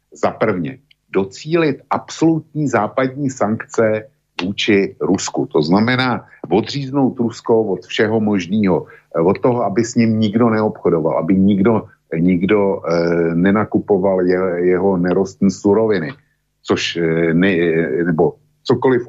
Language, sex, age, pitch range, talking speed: Slovak, male, 50-69, 95-140 Hz, 110 wpm